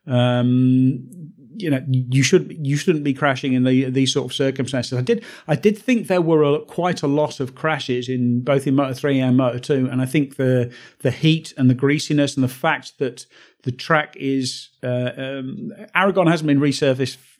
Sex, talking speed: male, 200 wpm